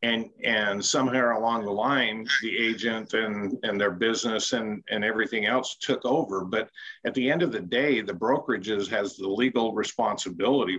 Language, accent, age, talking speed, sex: English, American, 50-69, 170 wpm, male